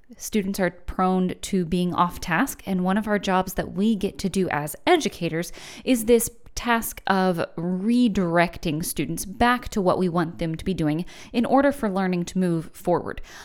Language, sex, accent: English, female, American